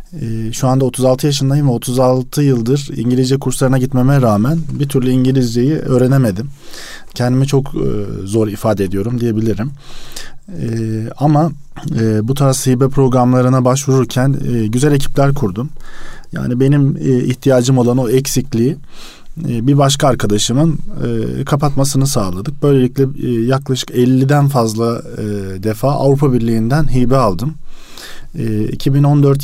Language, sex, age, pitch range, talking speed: Turkish, male, 40-59, 115-135 Hz, 105 wpm